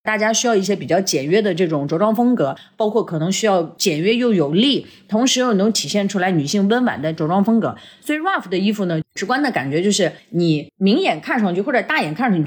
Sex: female